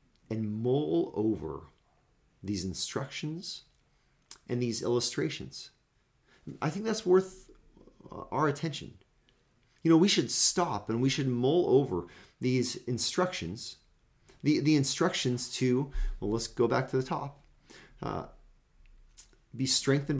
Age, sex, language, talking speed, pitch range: 40-59, male, English, 120 wpm, 110-150 Hz